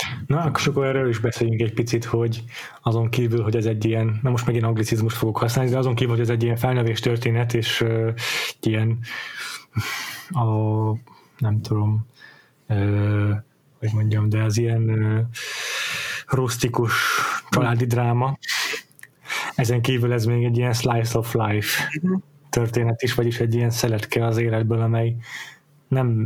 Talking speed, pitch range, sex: 150 wpm, 115-130 Hz, male